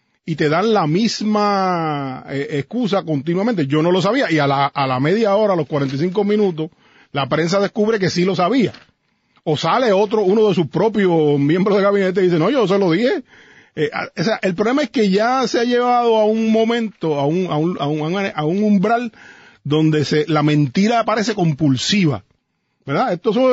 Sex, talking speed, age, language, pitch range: male, 195 wpm, 40-59, Spanish, 150-210 Hz